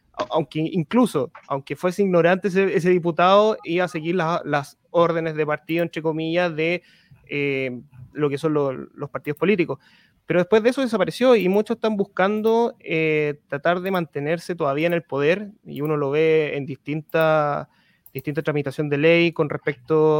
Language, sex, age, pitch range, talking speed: Spanish, male, 20-39, 150-180 Hz, 165 wpm